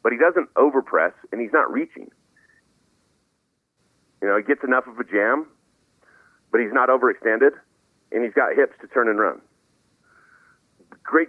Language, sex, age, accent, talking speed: English, male, 40-59, American, 155 wpm